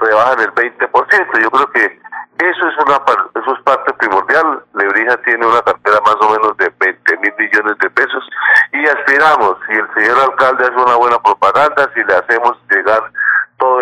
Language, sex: Spanish, male